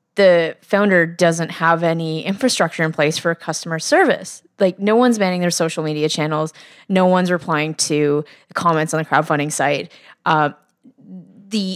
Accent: American